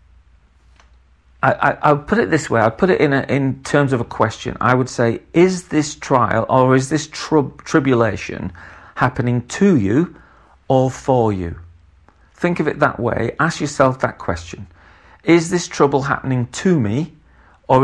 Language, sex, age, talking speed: English, male, 40-59, 170 wpm